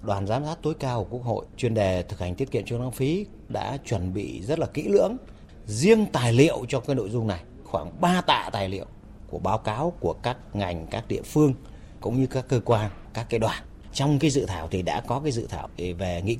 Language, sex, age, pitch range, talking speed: Vietnamese, male, 30-49, 105-155 Hz, 240 wpm